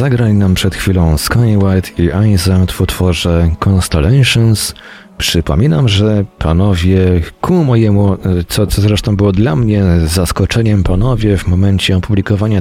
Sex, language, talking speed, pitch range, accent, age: male, Polish, 125 wpm, 85-105 Hz, native, 40-59